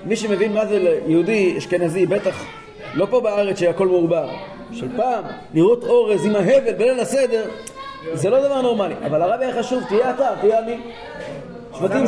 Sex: male